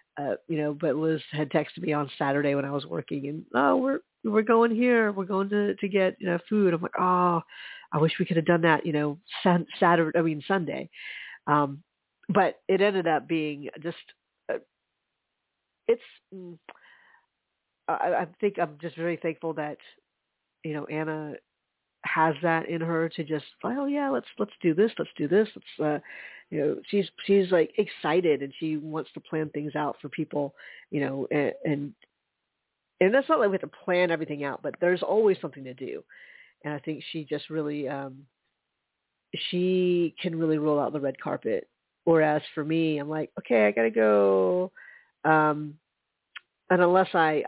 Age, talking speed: 50-69, 185 wpm